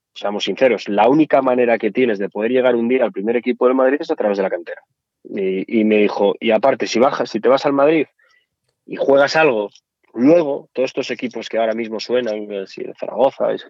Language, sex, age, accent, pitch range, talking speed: Spanish, male, 20-39, Spanish, 105-130 Hz, 220 wpm